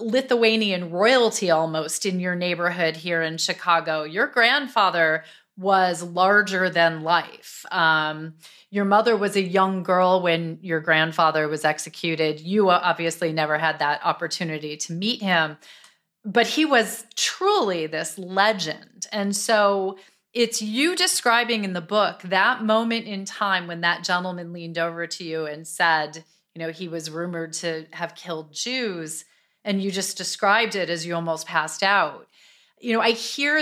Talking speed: 155 wpm